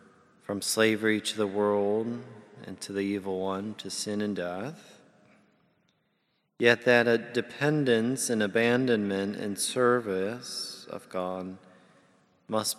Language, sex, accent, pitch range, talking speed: English, male, American, 95-105 Hz, 115 wpm